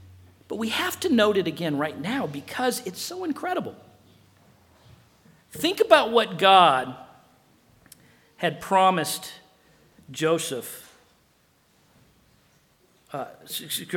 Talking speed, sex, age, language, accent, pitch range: 90 wpm, male, 50-69, English, American, 140-225 Hz